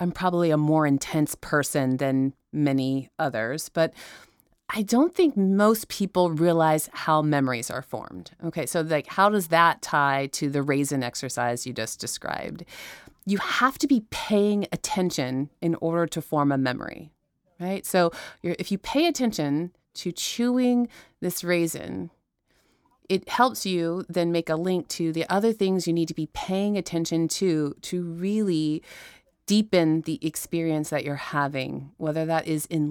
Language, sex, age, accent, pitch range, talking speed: English, female, 30-49, American, 150-185 Hz, 155 wpm